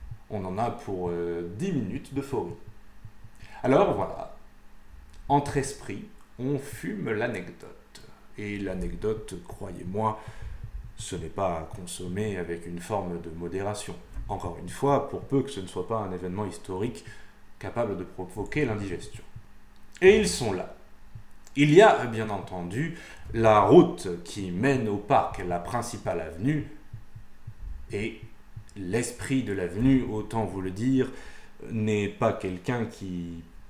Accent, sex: French, male